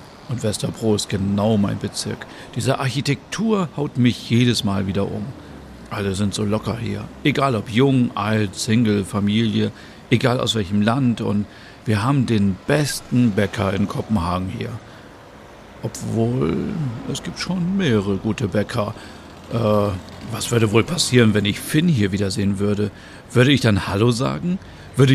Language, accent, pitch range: German, German, 100-130 Hz